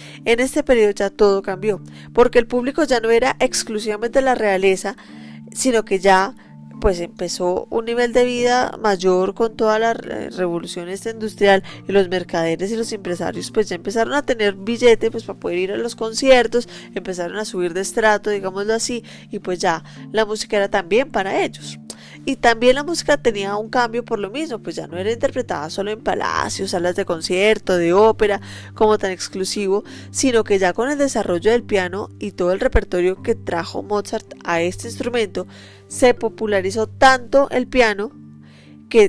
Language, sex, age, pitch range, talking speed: Spanish, female, 10-29, 185-235 Hz, 175 wpm